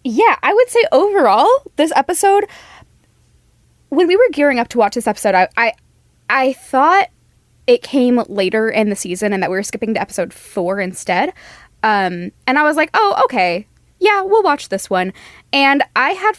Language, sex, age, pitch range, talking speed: English, female, 10-29, 195-270 Hz, 185 wpm